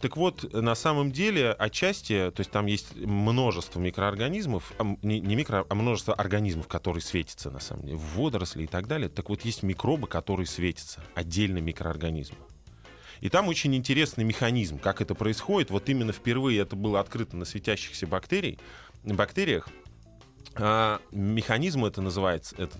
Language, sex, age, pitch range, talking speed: Russian, male, 20-39, 90-125 Hz, 155 wpm